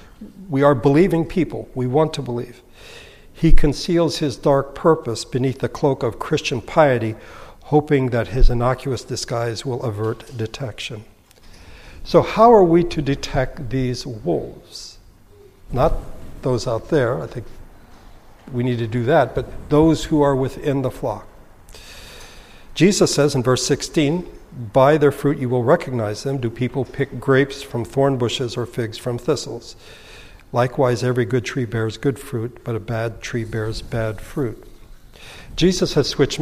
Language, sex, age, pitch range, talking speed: English, male, 60-79, 115-140 Hz, 155 wpm